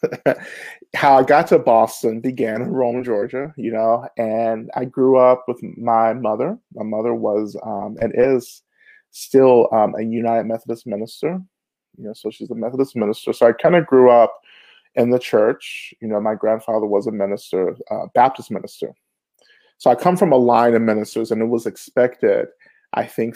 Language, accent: English, American